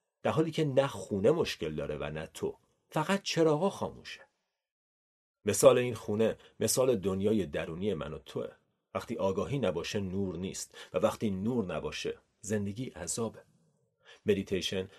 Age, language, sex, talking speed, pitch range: 40-59, Persian, male, 135 wpm, 100-160 Hz